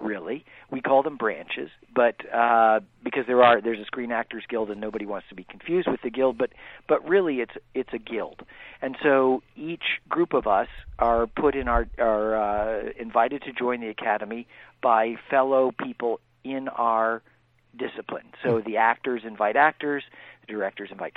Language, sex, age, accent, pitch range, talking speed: English, male, 50-69, American, 110-130 Hz, 175 wpm